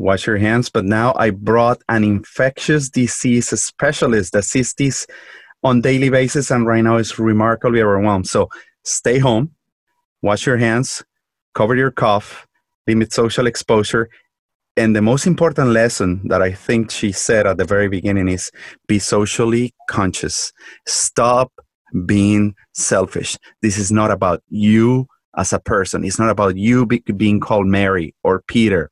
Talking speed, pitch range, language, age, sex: 155 wpm, 105-125 Hz, English, 30-49, male